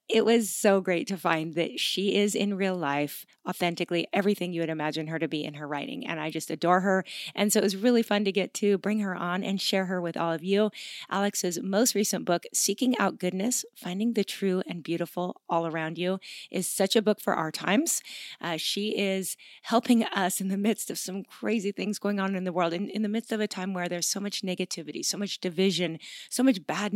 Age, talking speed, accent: 30-49, 230 wpm, American